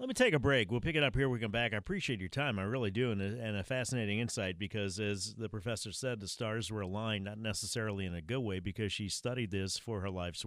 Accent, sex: American, male